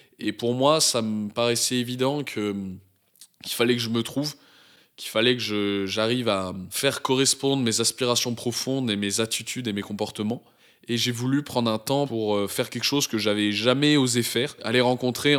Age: 20-39